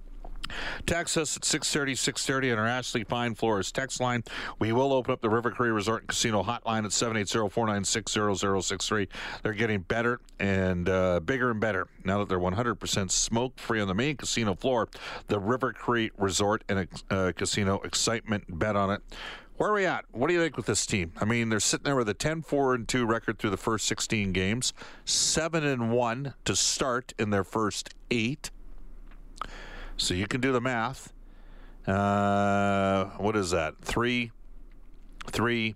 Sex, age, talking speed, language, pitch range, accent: male, 40-59, 165 wpm, English, 100-120 Hz, American